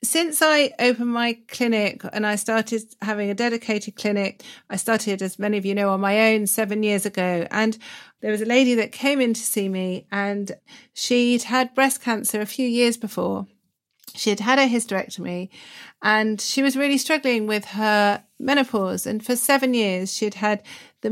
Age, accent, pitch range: 40-59, British, 205-250 Hz